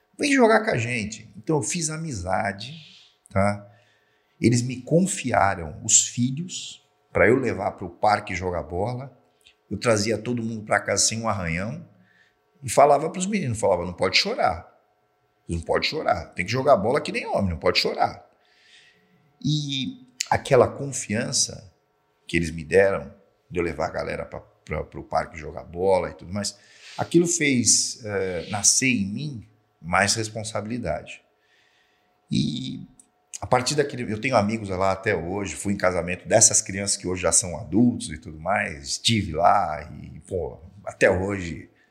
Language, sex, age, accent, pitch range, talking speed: Portuguese, male, 50-69, Brazilian, 95-125 Hz, 160 wpm